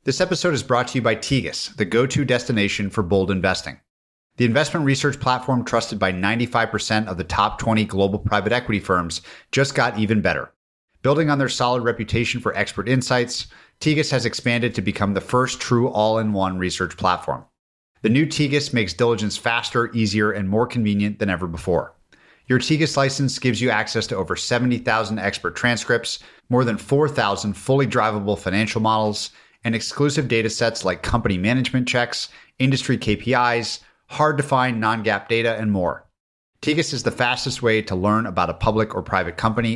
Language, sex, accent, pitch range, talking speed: English, male, American, 100-125 Hz, 170 wpm